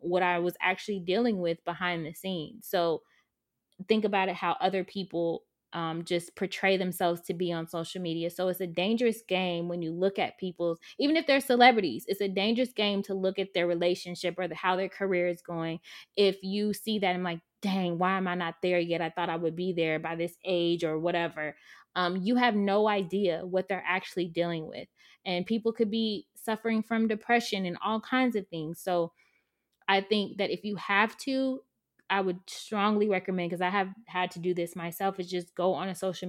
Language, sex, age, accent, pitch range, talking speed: English, female, 20-39, American, 175-215 Hz, 210 wpm